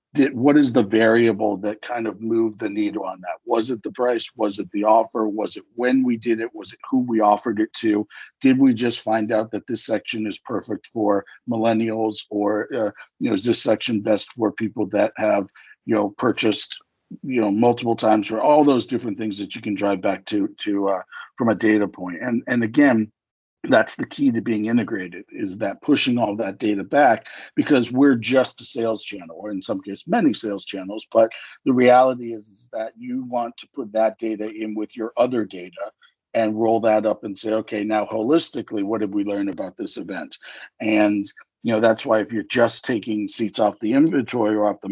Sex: male